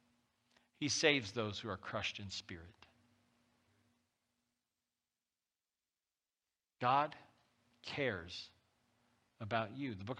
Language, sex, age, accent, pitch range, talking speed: English, male, 50-69, American, 105-120 Hz, 80 wpm